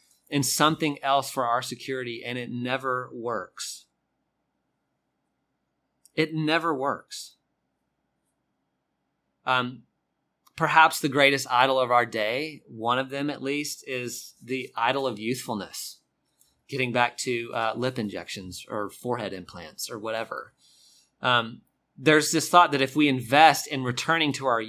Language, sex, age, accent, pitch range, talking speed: English, male, 30-49, American, 130-155 Hz, 130 wpm